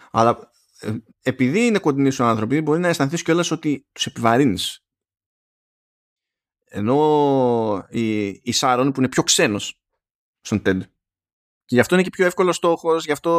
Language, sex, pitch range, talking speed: Greek, male, 115-155 Hz, 140 wpm